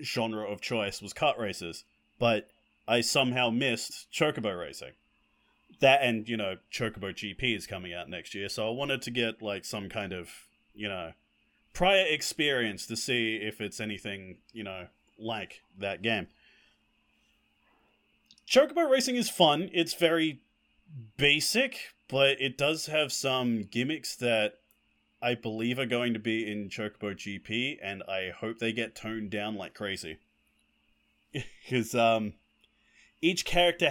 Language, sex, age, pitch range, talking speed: English, male, 30-49, 100-135 Hz, 145 wpm